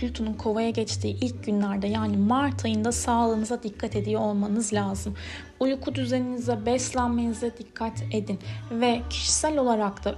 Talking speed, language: 130 wpm, Turkish